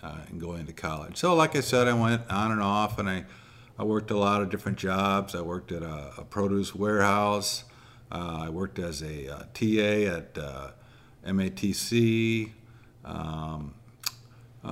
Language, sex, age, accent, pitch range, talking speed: English, male, 50-69, American, 90-115 Hz, 170 wpm